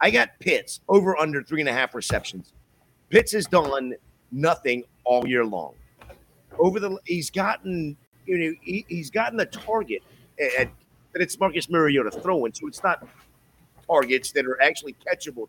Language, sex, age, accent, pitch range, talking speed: English, male, 50-69, American, 125-180 Hz, 165 wpm